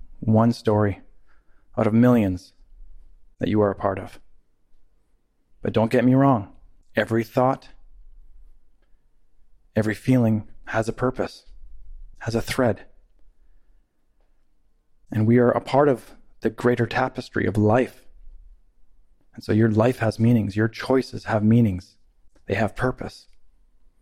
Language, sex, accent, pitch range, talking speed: English, male, American, 80-120 Hz, 125 wpm